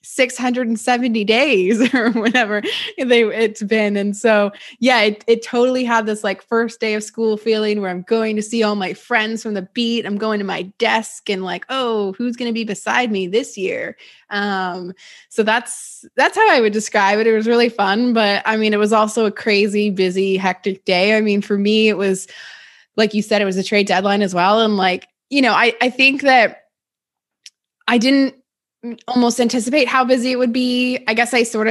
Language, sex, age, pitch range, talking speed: English, female, 20-39, 200-240 Hz, 205 wpm